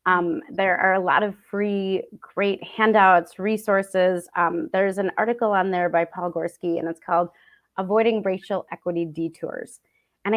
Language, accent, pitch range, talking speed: English, American, 175-215 Hz, 155 wpm